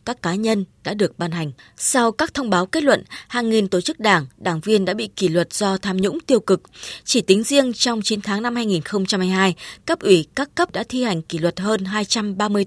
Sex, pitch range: female, 185-240 Hz